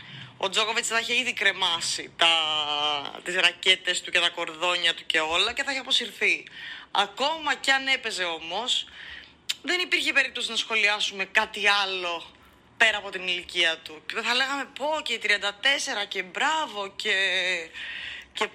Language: Greek